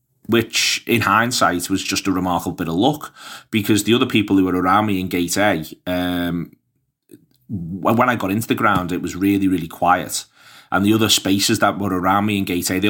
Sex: male